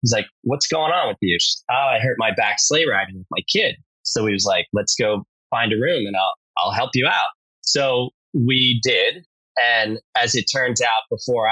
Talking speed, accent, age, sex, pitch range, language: 215 wpm, American, 30-49, male, 100-130 Hz, English